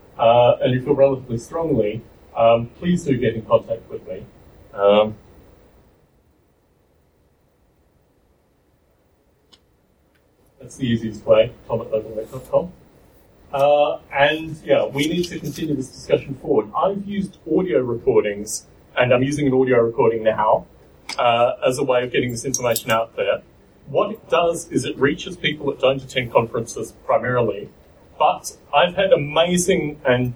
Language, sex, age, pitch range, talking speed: English, male, 30-49, 110-150 Hz, 130 wpm